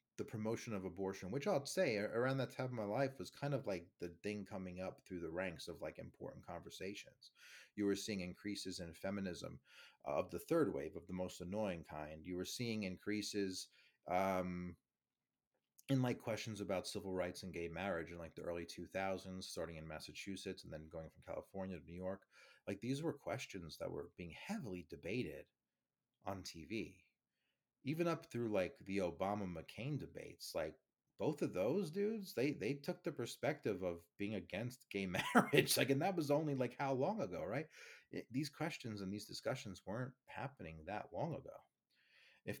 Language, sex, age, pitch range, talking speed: English, male, 30-49, 90-120 Hz, 180 wpm